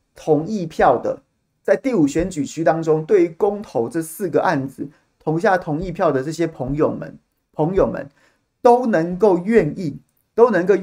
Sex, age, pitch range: male, 30-49, 140-210 Hz